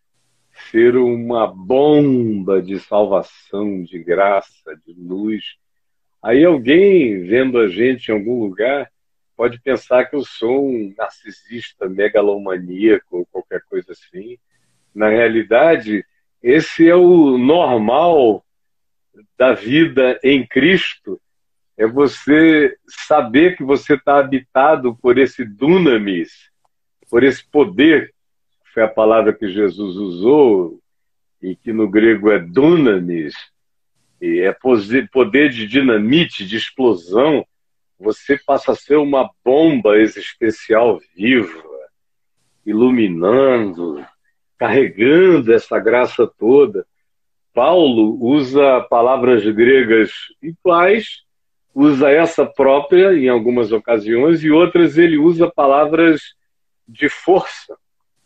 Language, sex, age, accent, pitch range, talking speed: Portuguese, male, 50-69, Brazilian, 110-170 Hz, 105 wpm